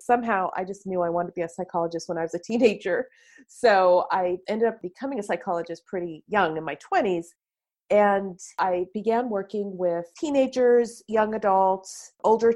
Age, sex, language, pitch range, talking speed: 40-59, female, English, 175-225 Hz, 170 wpm